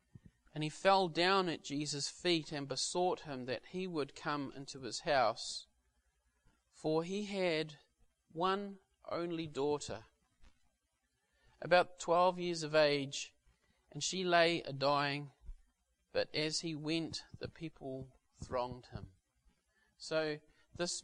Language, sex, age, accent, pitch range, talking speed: English, male, 40-59, Australian, 130-170 Hz, 120 wpm